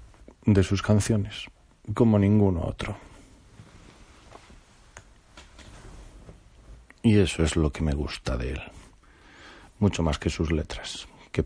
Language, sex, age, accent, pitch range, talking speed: Spanish, male, 40-59, Spanish, 85-110 Hz, 110 wpm